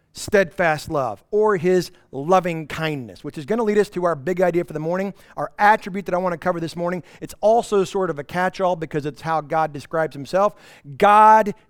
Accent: American